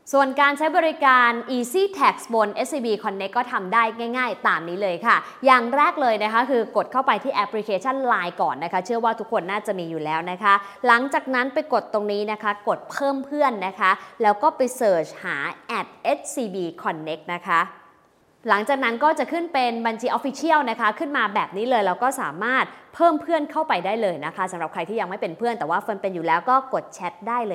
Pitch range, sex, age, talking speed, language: 195-270 Hz, female, 20-39, 35 wpm, English